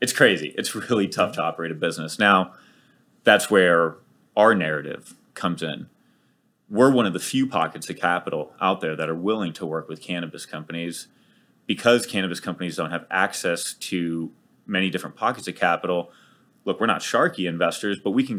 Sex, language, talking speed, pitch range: male, English, 175 wpm, 85-95 Hz